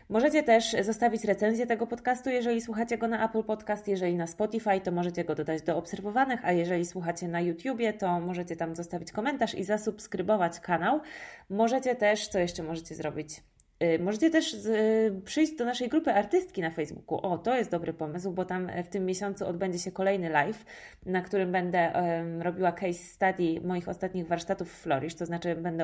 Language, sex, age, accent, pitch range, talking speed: Polish, female, 20-39, native, 175-215 Hz, 180 wpm